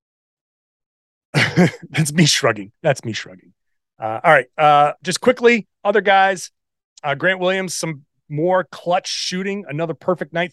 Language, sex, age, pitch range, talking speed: English, male, 30-49, 140-180 Hz, 135 wpm